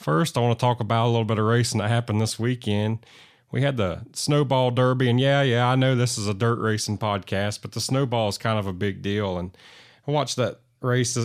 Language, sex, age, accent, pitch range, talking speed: English, male, 30-49, American, 105-125 Hz, 240 wpm